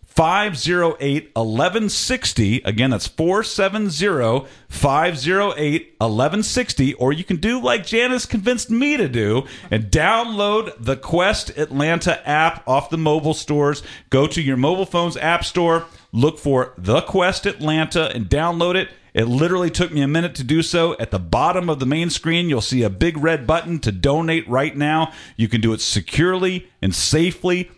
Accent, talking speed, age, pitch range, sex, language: American, 165 wpm, 40-59, 125-175 Hz, male, English